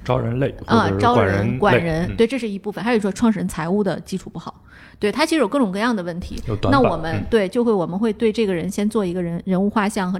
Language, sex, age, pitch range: Chinese, female, 20-39, 180-220 Hz